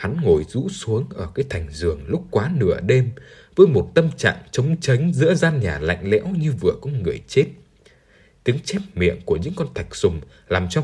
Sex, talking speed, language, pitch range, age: male, 210 wpm, Vietnamese, 100-155 Hz, 20-39